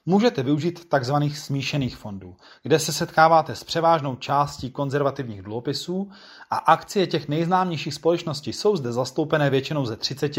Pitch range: 130-165 Hz